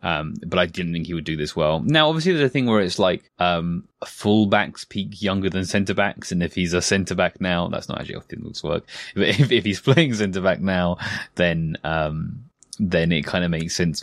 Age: 20-39